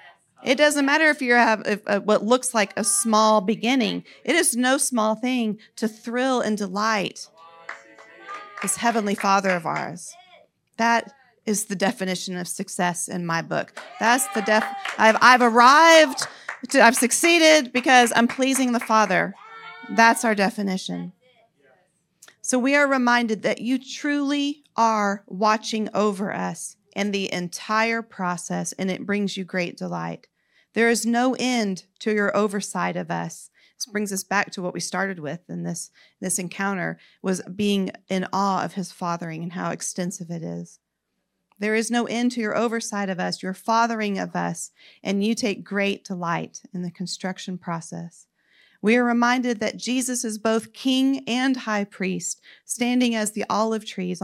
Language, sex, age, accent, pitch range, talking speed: English, female, 40-59, American, 185-240 Hz, 165 wpm